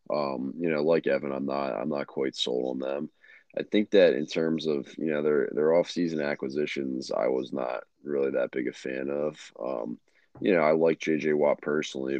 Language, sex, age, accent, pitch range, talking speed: English, male, 20-39, American, 70-85 Hz, 205 wpm